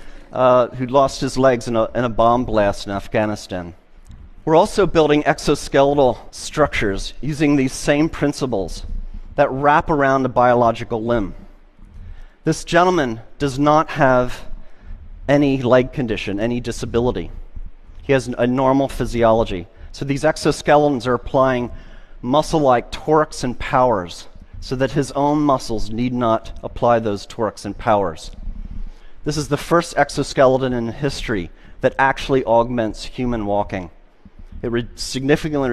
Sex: male